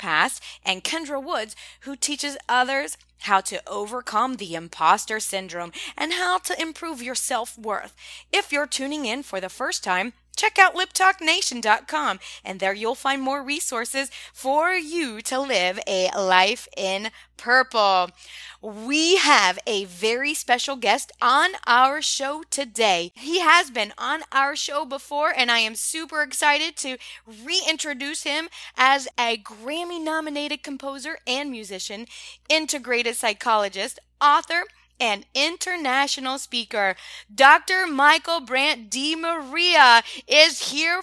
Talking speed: 130 wpm